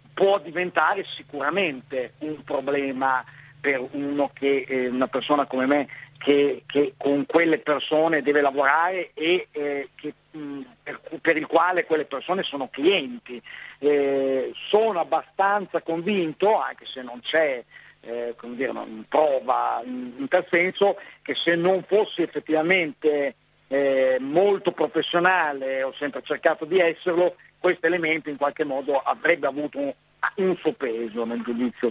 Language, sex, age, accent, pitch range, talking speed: Italian, male, 50-69, native, 140-175 Hz, 140 wpm